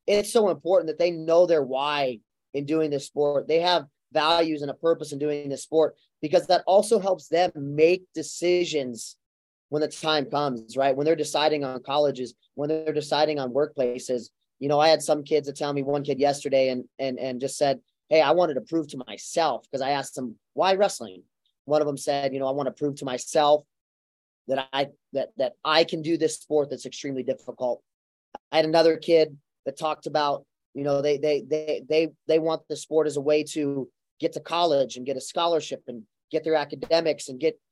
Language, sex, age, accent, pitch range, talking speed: English, male, 30-49, American, 135-165 Hz, 210 wpm